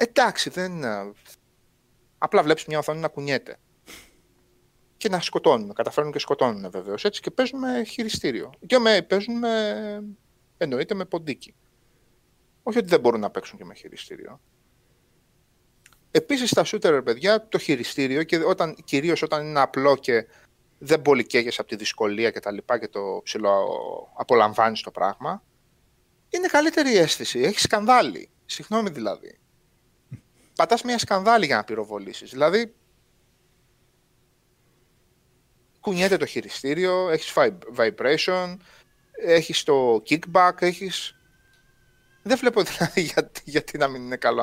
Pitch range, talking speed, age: 150-235 Hz, 125 wpm, 30-49